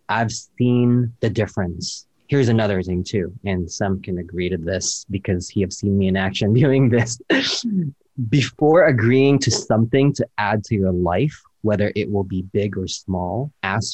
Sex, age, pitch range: male, 30-49, 95-120 Hz